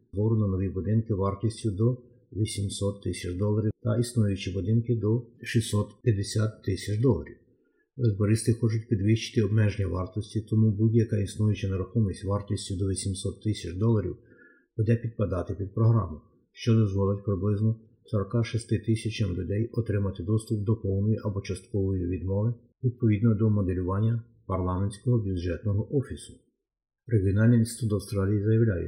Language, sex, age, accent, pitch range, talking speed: Ukrainian, male, 50-69, native, 100-115 Hz, 120 wpm